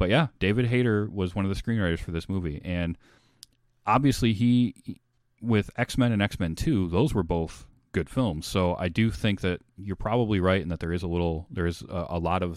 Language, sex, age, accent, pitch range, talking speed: English, male, 30-49, American, 85-105 Hz, 210 wpm